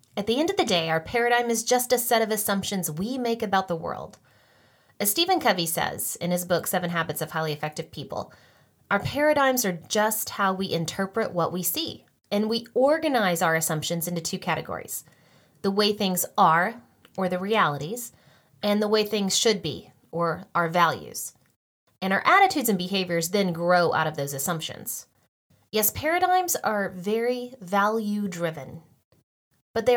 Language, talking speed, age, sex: English, 170 wpm, 20-39, female